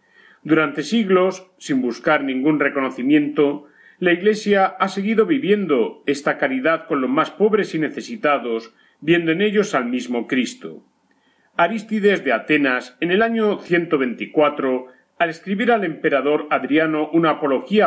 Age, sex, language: 40-59, male, Spanish